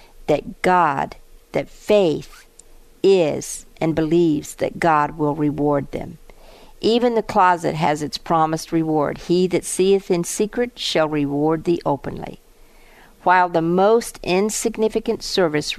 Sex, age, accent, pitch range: female, 50-69, American, 155-190 Hz